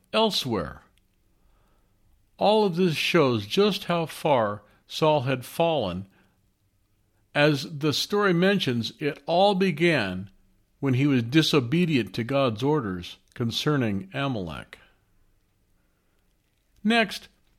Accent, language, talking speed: American, English, 95 wpm